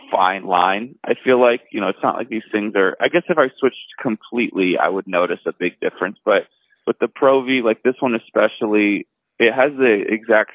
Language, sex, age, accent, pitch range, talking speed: English, male, 20-39, American, 100-125 Hz, 215 wpm